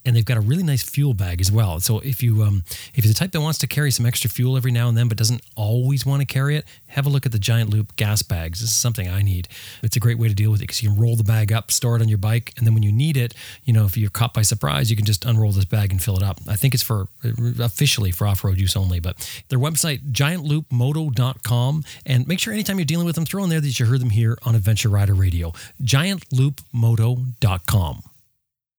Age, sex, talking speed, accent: 40-59, male, 265 wpm, American